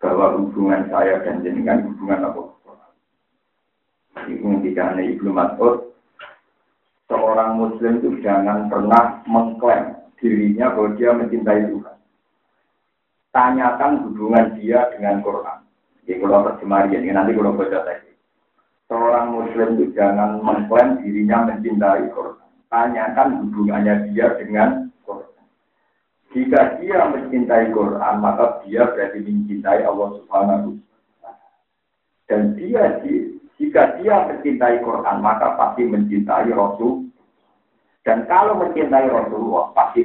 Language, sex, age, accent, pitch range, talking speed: Indonesian, male, 50-69, native, 105-120 Hz, 110 wpm